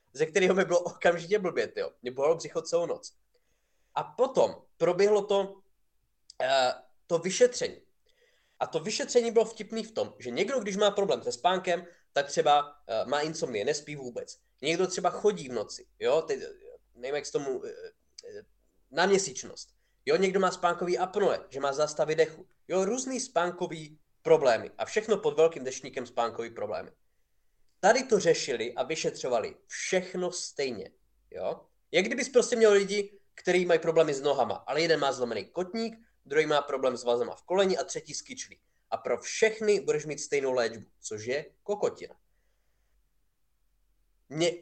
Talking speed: 155 wpm